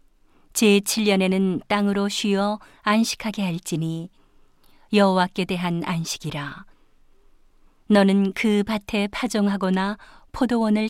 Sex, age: female, 40-59